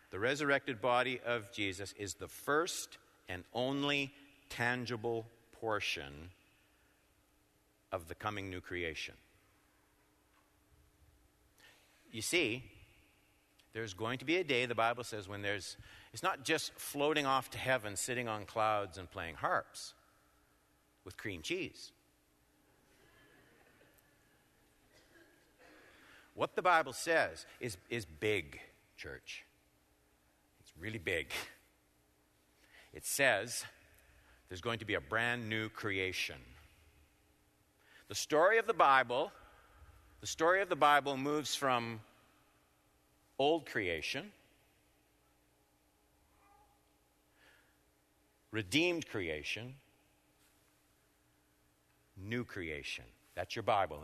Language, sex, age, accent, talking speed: English, male, 50-69, American, 95 wpm